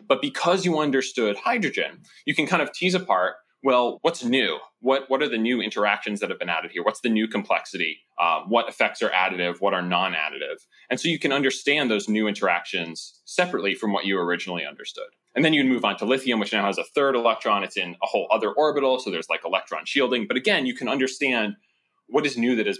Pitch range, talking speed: 100-145 Hz, 225 wpm